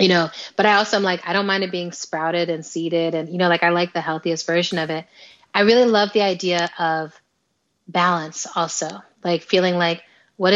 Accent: American